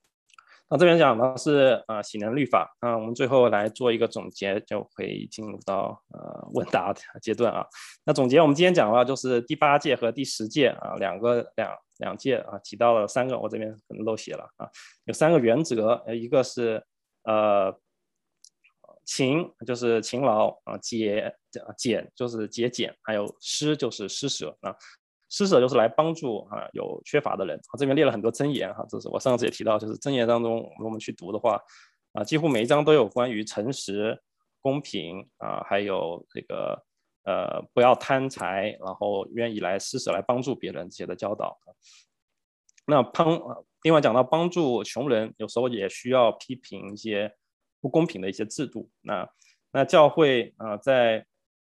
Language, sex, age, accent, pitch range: English, male, 20-39, Chinese, 110-140 Hz